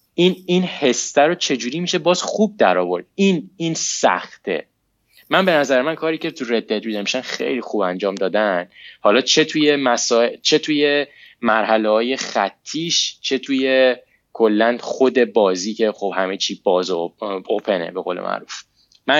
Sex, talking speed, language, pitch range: male, 155 wpm, Persian, 110-140 Hz